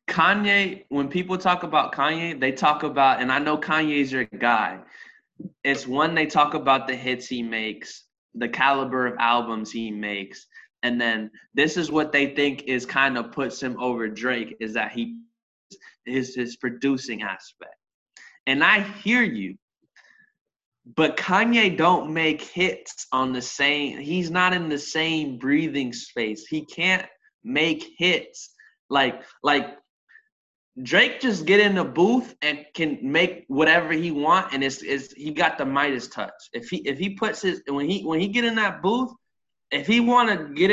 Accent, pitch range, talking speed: American, 130-185 Hz, 170 wpm